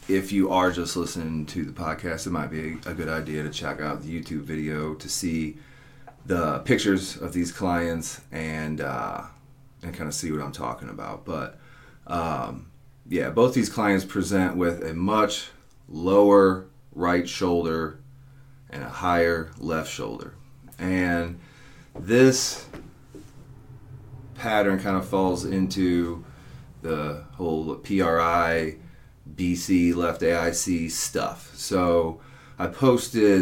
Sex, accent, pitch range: male, American, 85-100 Hz